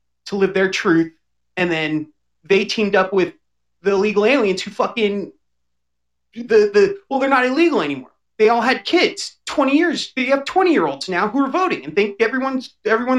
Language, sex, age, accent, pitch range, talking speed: English, male, 30-49, American, 200-270 Hz, 185 wpm